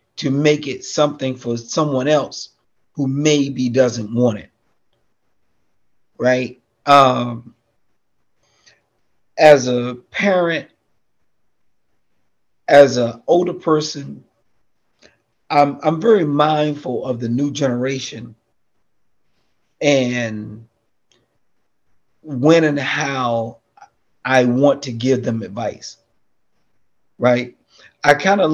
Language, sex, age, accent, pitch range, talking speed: English, male, 40-59, American, 120-150 Hz, 90 wpm